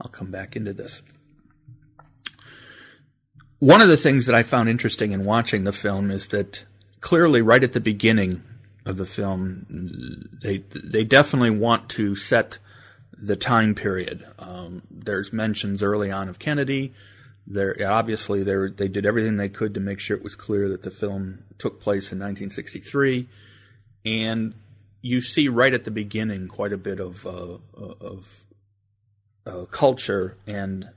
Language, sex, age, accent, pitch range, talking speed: English, male, 40-59, American, 100-115 Hz, 155 wpm